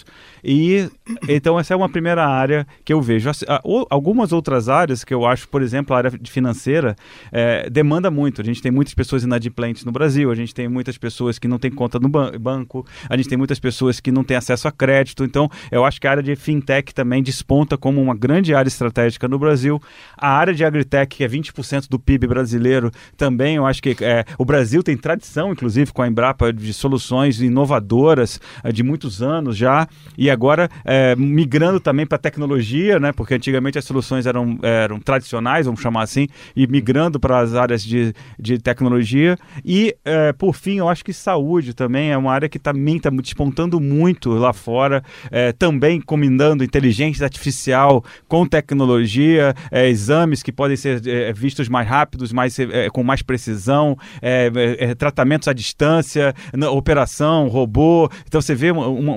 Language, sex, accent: Portuguese, male, Brazilian